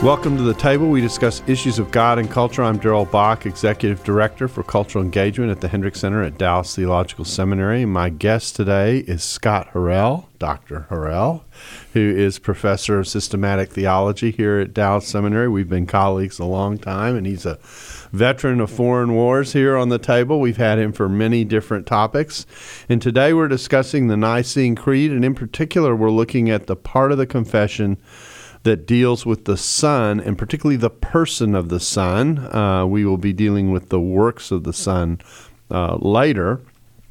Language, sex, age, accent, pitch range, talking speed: English, male, 40-59, American, 100-125 Hz, 180 wpm